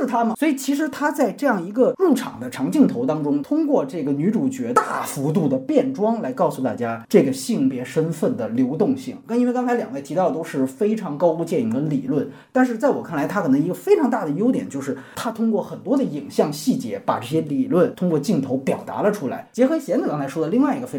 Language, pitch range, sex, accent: Chinese, 210-265 Hz, male, native